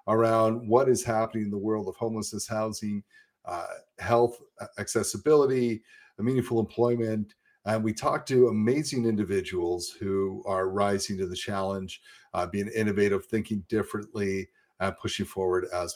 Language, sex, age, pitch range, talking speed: English, male, 50-69, 95-115 Hz, 145 wpm